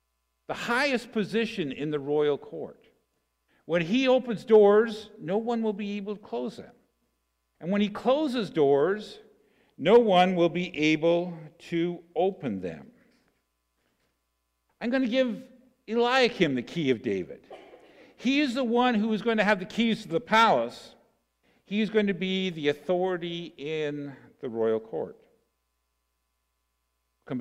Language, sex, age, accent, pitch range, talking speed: English, male, 50-69, American, 145-210 Hz, 145 wpm